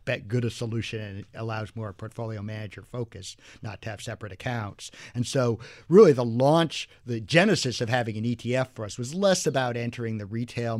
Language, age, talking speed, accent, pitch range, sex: English, 50-69, 195 wpm, American, 110-130 Hz, male